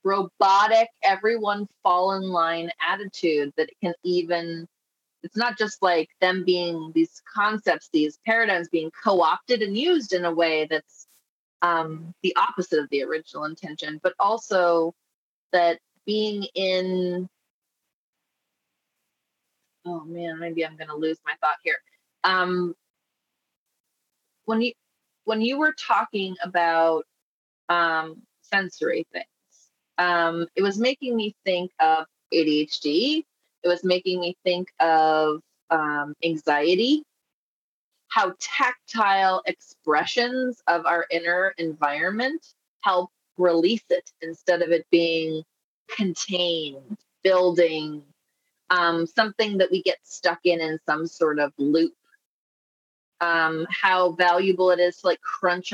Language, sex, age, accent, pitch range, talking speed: English, female, 30-49, American, 165-195 Hz, 120 wpm